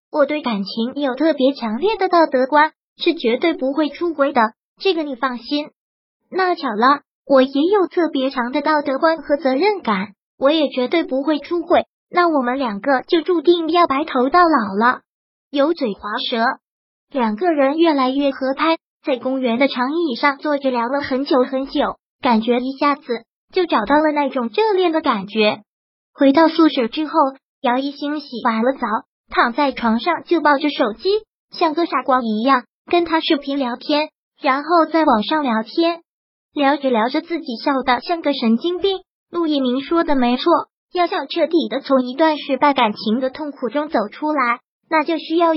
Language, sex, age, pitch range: Chinese, male, 20-39, 250-325 Hz